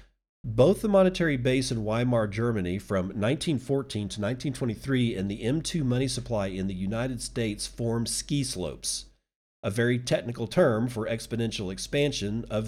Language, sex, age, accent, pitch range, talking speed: English, male, 40-59, American, 100-135 Hz, 145 wpm